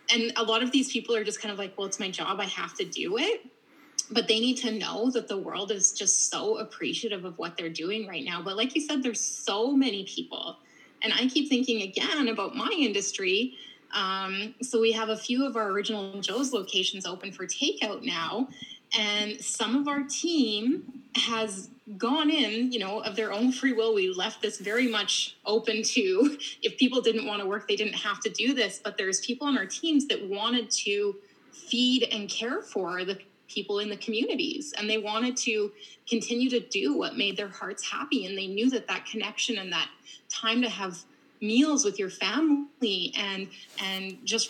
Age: 20-39